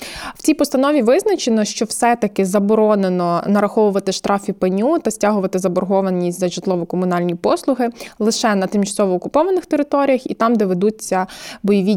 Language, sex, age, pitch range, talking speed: Ukrainian, female, 20-39, 185-220 Hz, 130 wpm